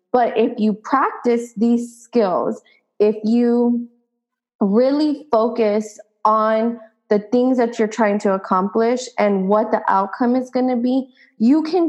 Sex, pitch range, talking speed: female, 210-240 Hz, 140 wpm